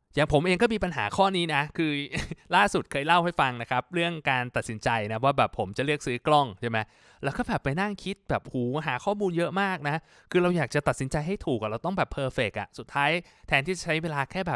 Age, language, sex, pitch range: 20-39, Thai, male, 125-160 Hz